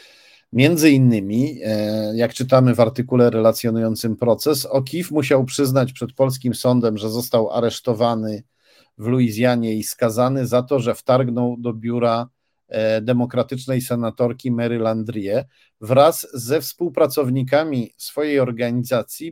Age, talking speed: 50-69, 110 wpm